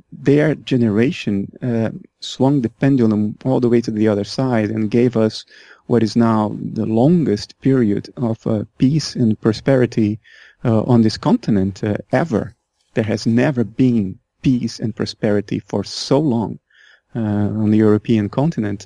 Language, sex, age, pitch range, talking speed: English, male, 30-49, 110-130 Hz, 155 wpm